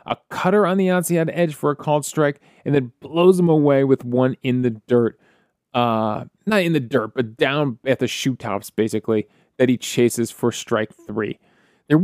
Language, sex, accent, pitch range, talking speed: English, male, American, 120-165 Hz, 195 wpm